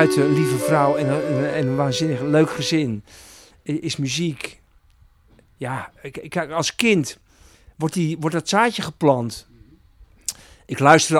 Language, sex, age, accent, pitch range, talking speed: Dutch, male, 50-69, Dutch, 125-160 Hz, 100 wpm